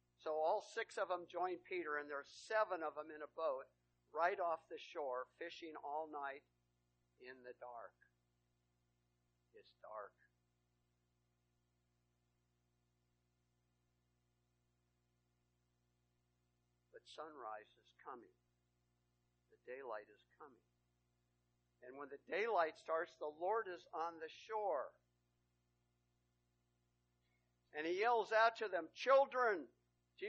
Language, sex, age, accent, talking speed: English, male, 50-69, American, 110 wpm